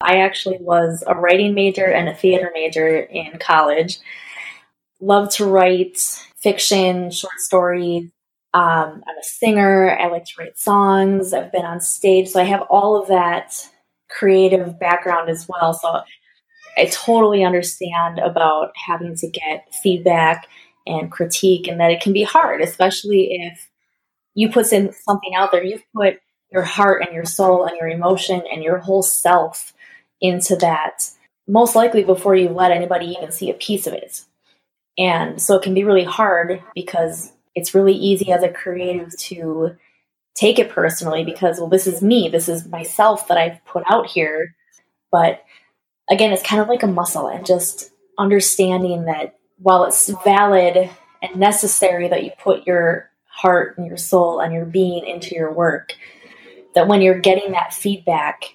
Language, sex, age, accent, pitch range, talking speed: English, female, 20-39, American, 170-195 Hz, 165 wpm